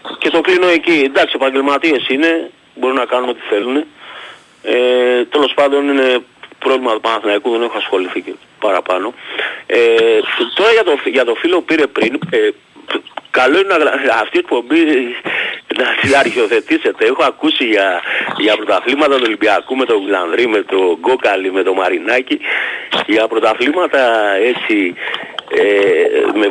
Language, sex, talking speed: Greek, male, 150 wpm